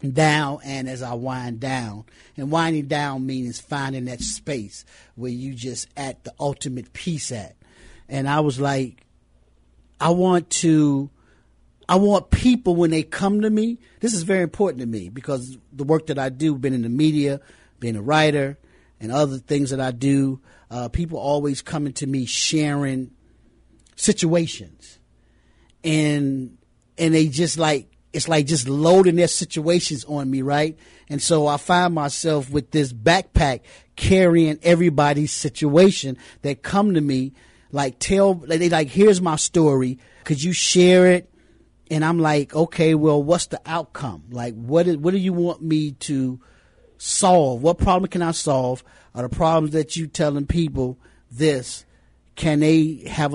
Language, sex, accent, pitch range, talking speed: English, male, American, 130-165 Hz, 160 wpm